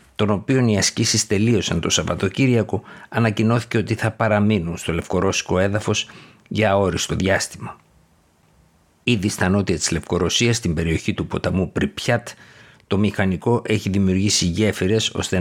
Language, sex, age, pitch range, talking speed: Greek, male, 50-69, 90-110 Hz, 125 wpm